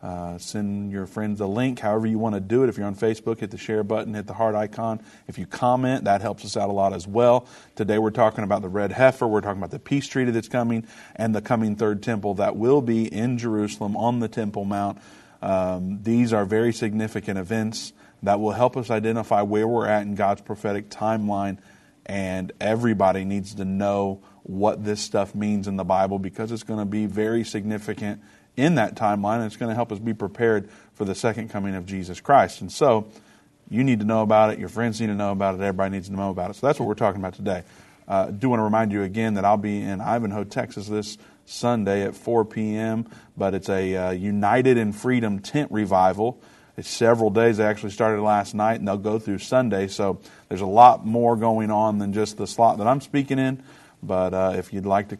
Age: 40-59